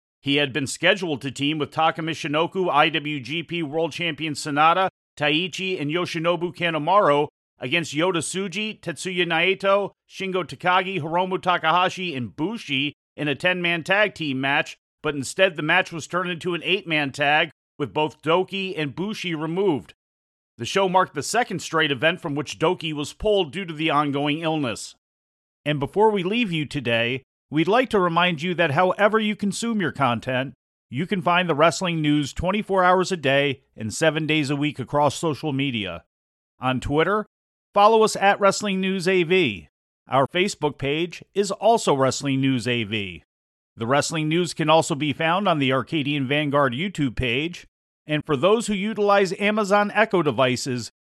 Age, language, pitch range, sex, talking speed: 40-59, English, 140-185 Hz, male, 165 wpm